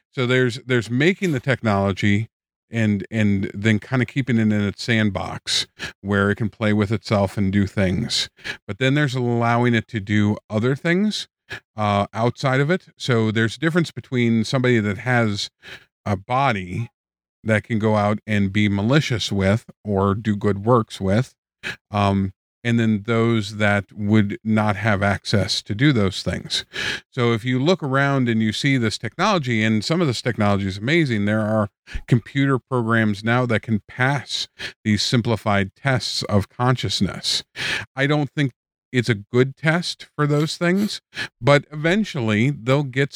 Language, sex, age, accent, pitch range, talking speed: English, male, 50-69, American, 105-130 Hz, 165 wpm